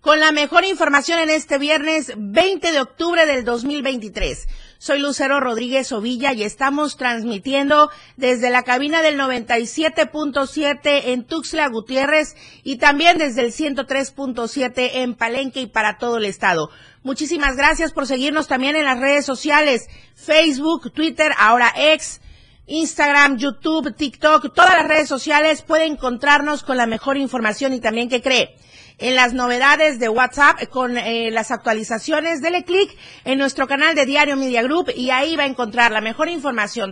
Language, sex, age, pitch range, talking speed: Spanish, female, 40-59, 245-305 Hz, 155 wpm